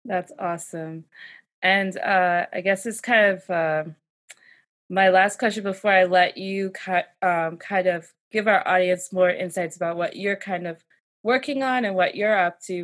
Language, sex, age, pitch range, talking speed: English, female, 20-39, 175-205 Hz, 175 wpm